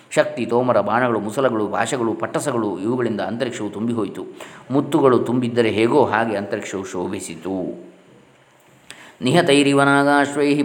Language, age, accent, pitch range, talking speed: Kannada, 20-39, native, 110-130 Hz, 90 wpm